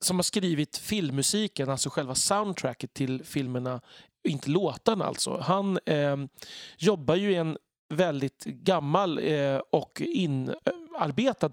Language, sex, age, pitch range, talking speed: Swedish, male, 40-59, 140-180 Hz, 125 wpm